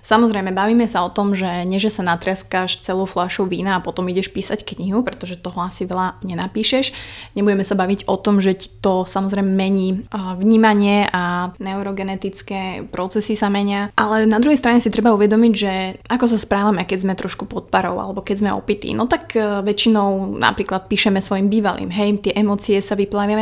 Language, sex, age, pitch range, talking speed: Slovak, female, 20-39, 190-220 Hz, 175 wpm